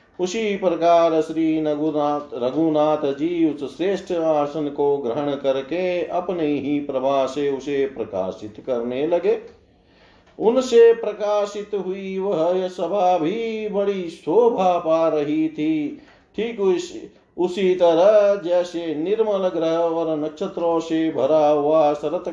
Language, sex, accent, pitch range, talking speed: Hindi, male, native, 145-190 Hz, 115 wpm